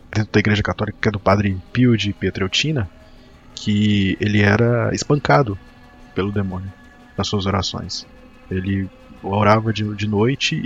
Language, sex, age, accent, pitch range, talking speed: Portuguese, male, 20-39, Brazilian, 100-125 Hz, 125 wpm